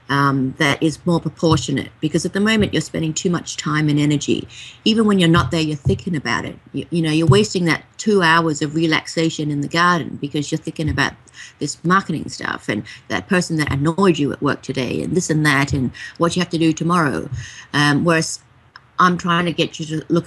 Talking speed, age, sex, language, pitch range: 220 wpm, 30-49, female, English, 145-170 Hz